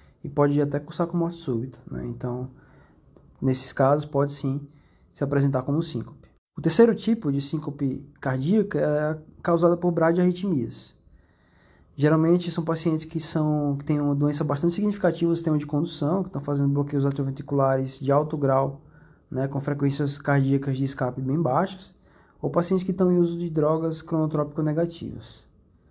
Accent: Brazilian